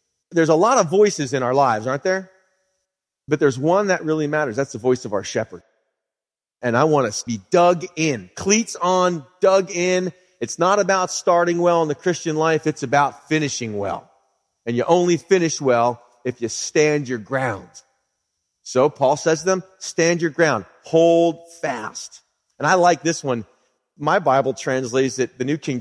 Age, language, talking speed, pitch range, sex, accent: 30-49, English, 185 wpm, 135-180 Hz, male, American